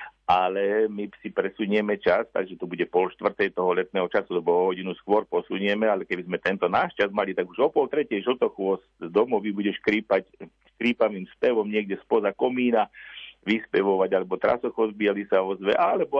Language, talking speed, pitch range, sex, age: Slovak, 165 wpm, 95-120 Hz, male, 50-69